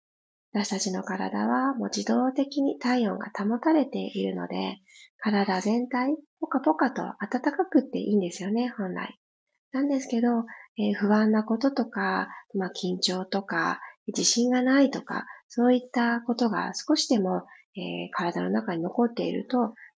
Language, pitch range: Japanese, 195-275 Hz